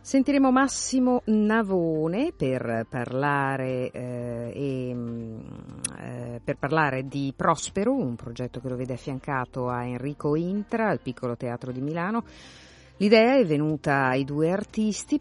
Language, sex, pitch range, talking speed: Italian, female, 125-185 Hz, 125 wpm